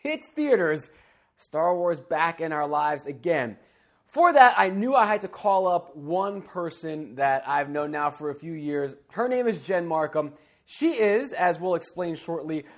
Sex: male